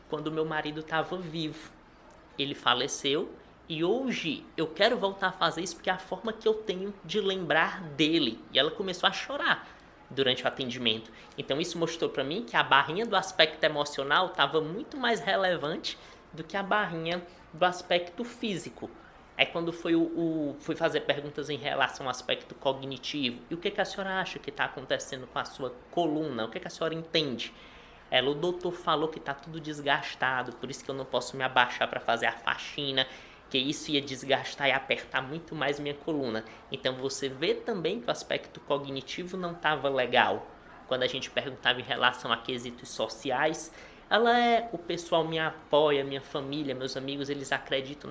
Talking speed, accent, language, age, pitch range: 190 wpm, Brazilian, Portuguese, 20-39, 135-180 Hz